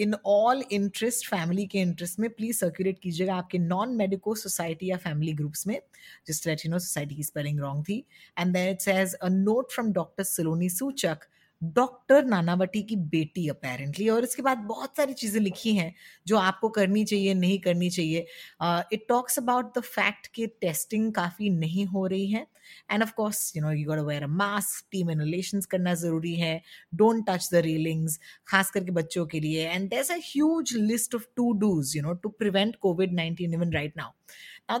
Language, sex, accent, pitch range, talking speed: Hindi, female, native, 170-230 Hz, 180 wpm